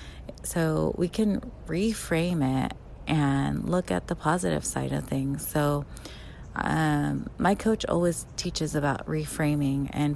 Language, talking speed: English, 130 wpm